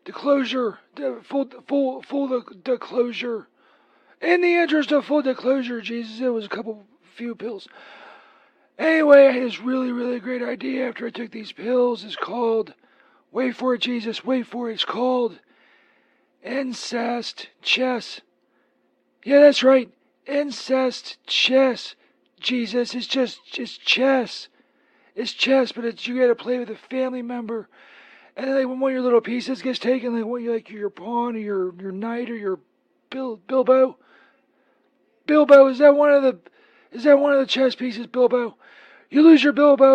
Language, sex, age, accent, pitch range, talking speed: English, male, 40-59, American, 235-270 Hz, 175 wpm